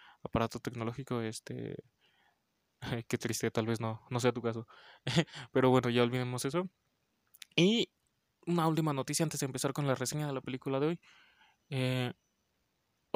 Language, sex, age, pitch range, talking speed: Spanish, male, 20-39, 125-140 Hz, 150 wpm